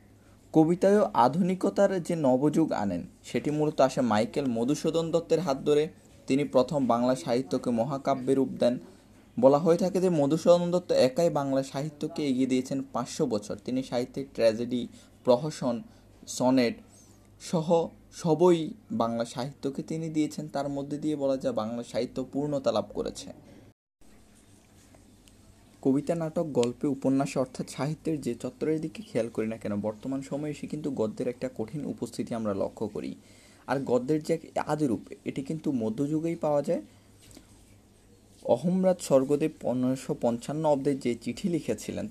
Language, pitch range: Bengali, 115-155 Hz